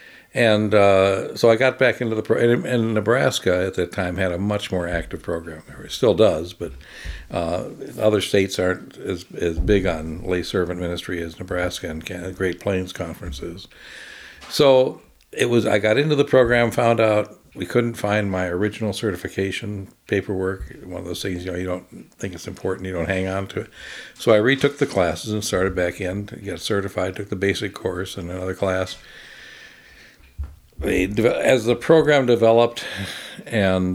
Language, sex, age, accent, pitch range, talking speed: English, male, 60-79, American, 90-105 Hz, 175 wpm